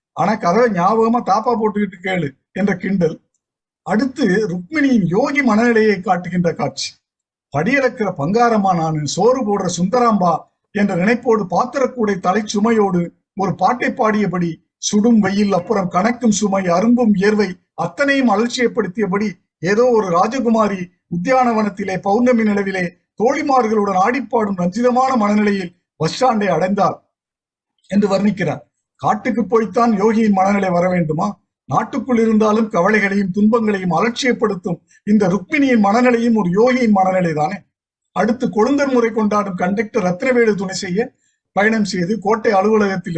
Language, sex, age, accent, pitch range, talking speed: Tamil, male, 50-69, native, 190-235 Hz, 110 wpm